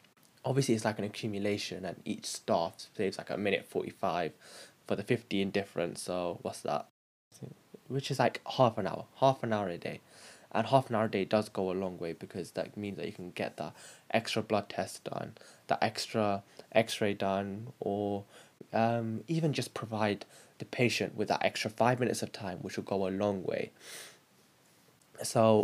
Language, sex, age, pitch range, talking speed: English, male, 10-29, 100-120 Hz, 185 wpm